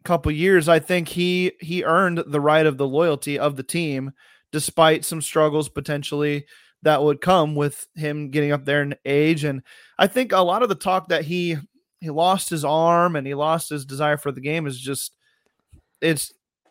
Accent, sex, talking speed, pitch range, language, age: American, male, 195 wpm, 145-175 Hz, English, 30-49